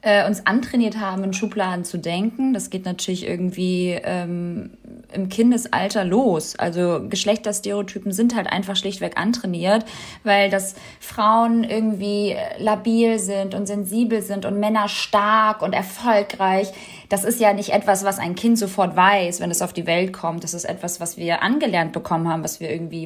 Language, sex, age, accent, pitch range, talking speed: German, female, 20-39, German, 180-215 Hz, 165 wpm